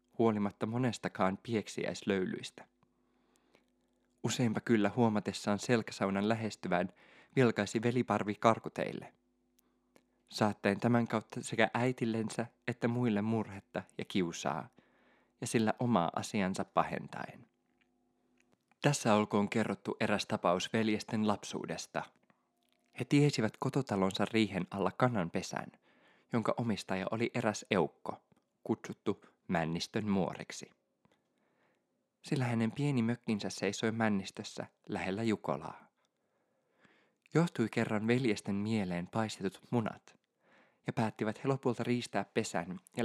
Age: 20-39